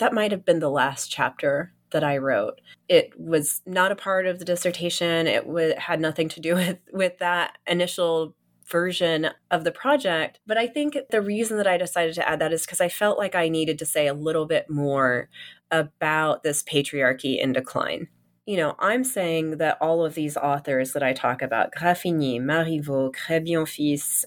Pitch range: 150-190 Hz